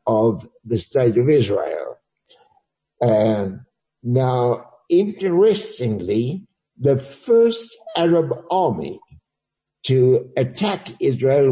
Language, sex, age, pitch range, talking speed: Polish, male, 60-79, 120-165 Hz, 80 wpm